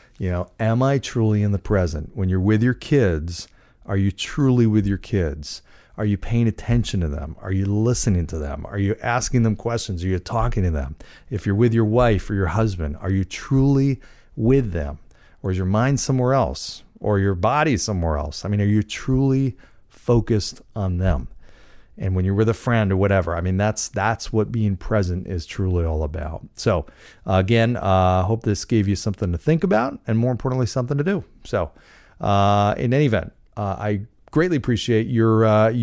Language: English